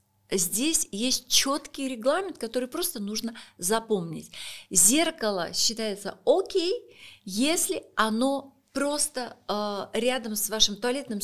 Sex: female